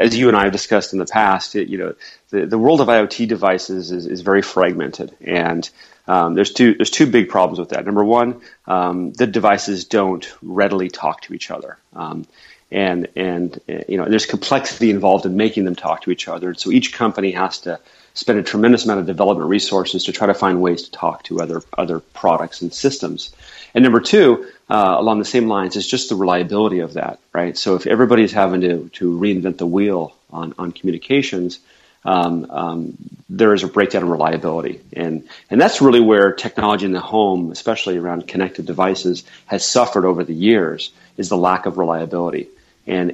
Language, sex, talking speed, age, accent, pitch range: English, male, 200 wpm, 30-49, American, 90-105 Hz